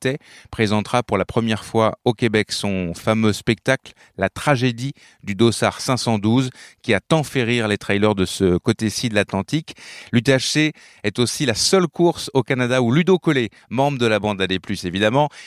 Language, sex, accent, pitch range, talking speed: French, male, French, 100-130 Hz, 175 wpm